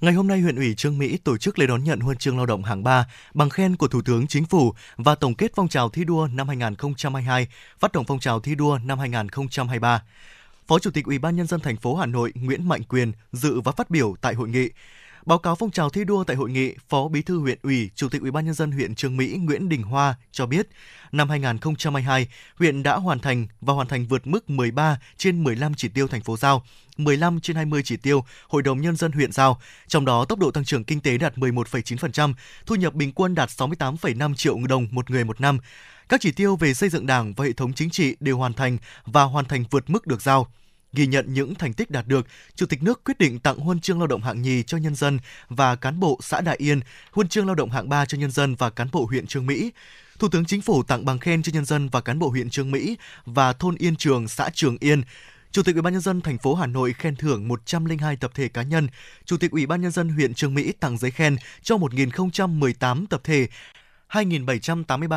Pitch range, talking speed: 130-165 Hz, 245 wpm